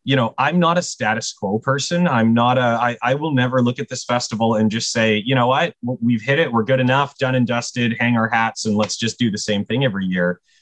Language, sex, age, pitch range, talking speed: English, male, 30-49, 110-130 Hz, 260 wpm